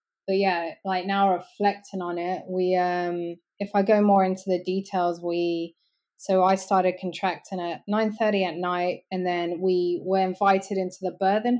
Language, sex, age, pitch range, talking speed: English, female, 20-39, 175-200 Hz, 175 wpm